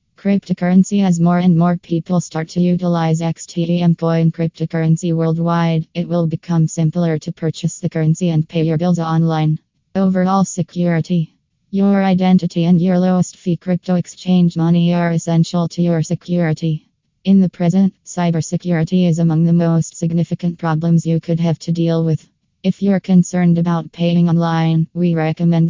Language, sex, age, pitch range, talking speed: English, female, 20-39, 165-175 Hz, 155 wpm